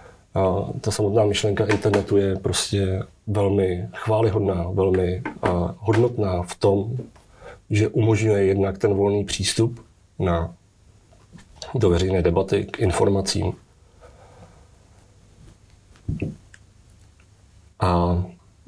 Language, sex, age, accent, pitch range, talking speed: Czech, male, 40-59, native, 95-110 Hz, 85 wpm